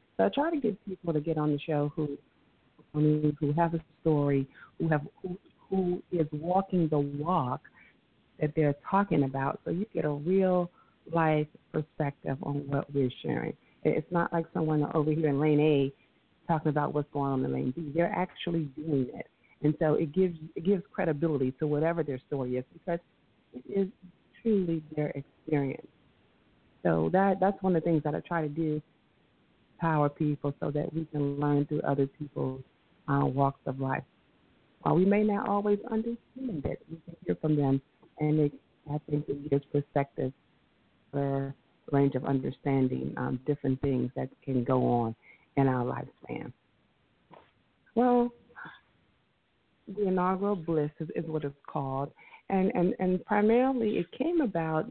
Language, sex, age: English, female, 40-59